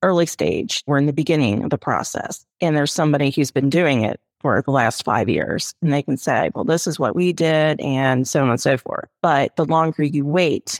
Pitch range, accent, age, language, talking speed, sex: 140-170 Hz, American, 30-49, English, 235 wpm, female